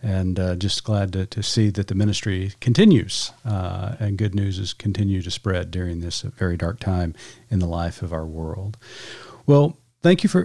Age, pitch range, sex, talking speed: 40-59, 100-120 Hz, male, 195 wpm